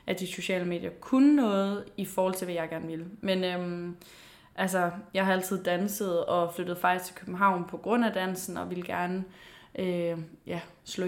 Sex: female